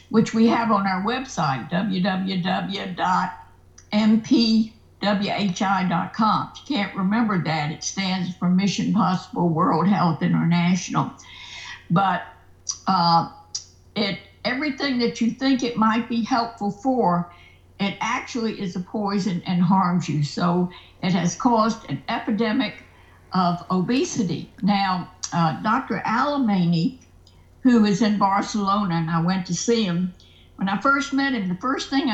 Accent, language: American, English